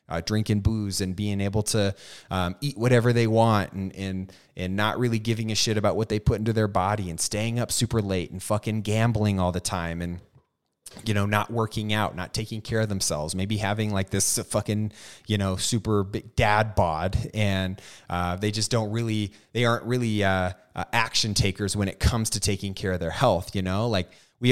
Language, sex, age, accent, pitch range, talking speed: English, male, 20-39, American, 95-115 Hz, 210 wpm